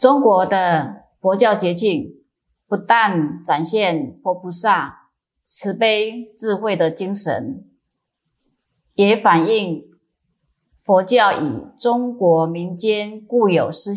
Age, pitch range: 30-49, 170-215 Hz